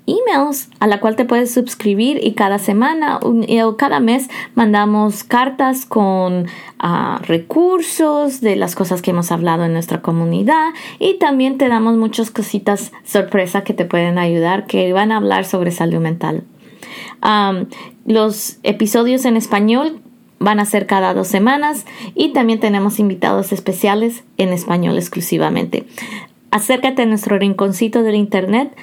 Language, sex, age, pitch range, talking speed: English, female, 20-39, 195-250 Hz, 140 wpm